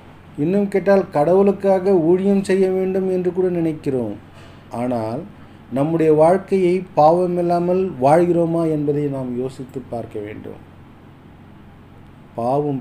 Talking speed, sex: 95 wpm, male